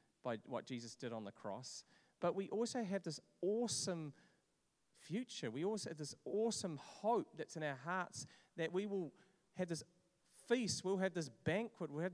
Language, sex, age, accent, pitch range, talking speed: English, male, 40-59, Australian, 130-175 Hz, 180 wpm